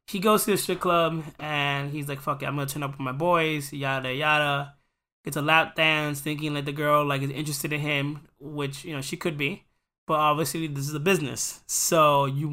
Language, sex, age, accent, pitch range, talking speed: English, male, 20-39, American, 140-165 Hz, 230 wpm